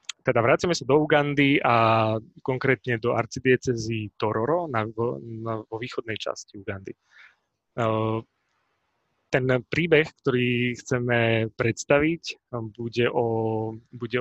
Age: 20-39